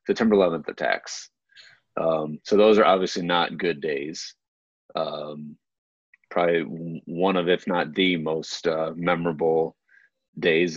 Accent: American